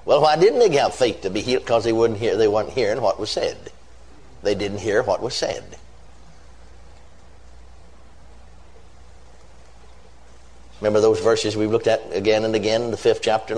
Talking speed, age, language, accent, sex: 165 wpm, 60-79, English, American, male